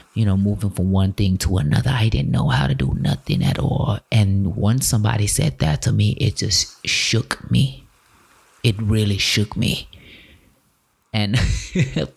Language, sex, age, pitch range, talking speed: English, male, 20-39, 95-115 Hz, 165 wpm